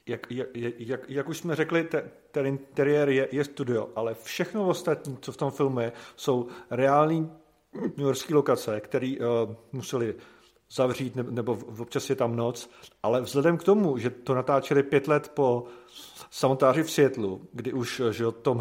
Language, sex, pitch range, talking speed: Czech, male, 125-145 Hz, 170 wpm